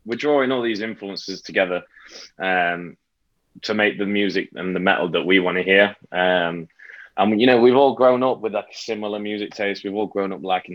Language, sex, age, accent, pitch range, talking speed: English, male, 20-39, British, 90-105 Hz, 205 wpm